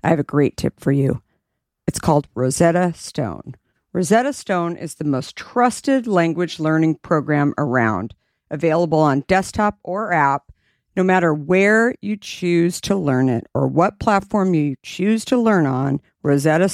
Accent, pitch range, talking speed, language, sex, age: American, 140-190 Hz, 155 wpm, English, female, 50-69